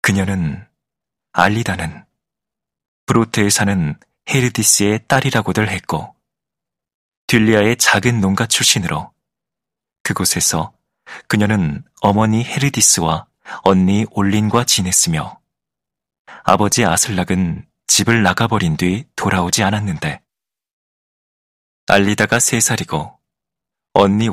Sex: male